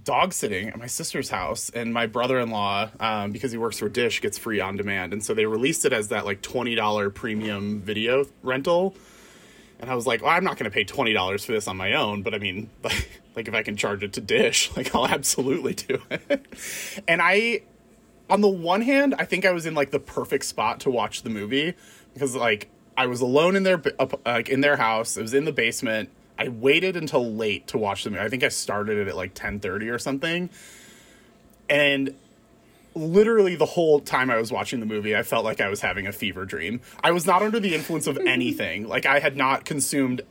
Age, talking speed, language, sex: 30-49, 225 wpm, English, male